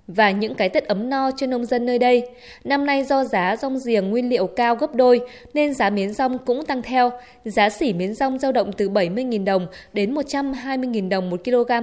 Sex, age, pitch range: female, 20-39, 205-260 Hz